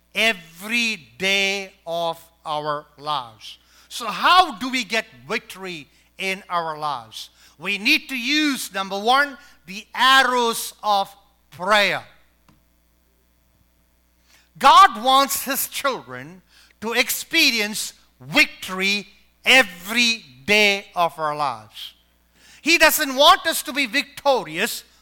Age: 50-69